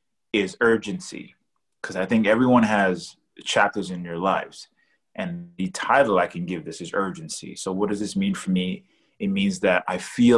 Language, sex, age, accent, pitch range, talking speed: English, male, 30-49, American, 95-115 Hz, 185 wpm